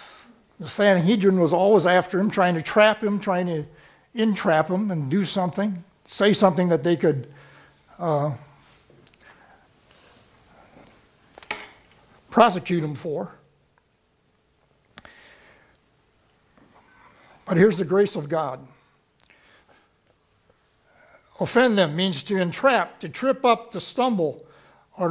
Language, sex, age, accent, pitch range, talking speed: English, male, 60-79, American, 160-205 Hz, 105 wpm